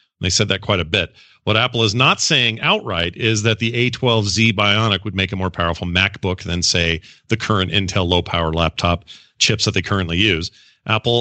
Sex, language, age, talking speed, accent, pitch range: male, English, 40-59, 195 wpm, American, 100-130 Hz